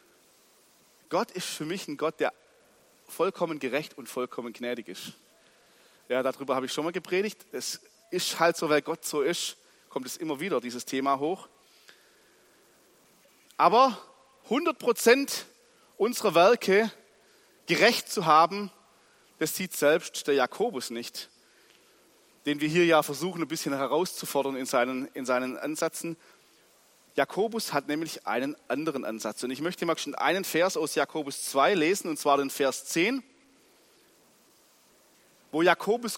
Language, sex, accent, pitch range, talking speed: German, male, German, 145-200 Hz, 140 wpm